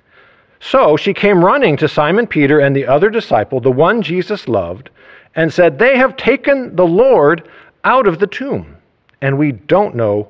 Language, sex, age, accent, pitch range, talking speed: English, male, 50-69, American, 120-170 Hz, 175 wpm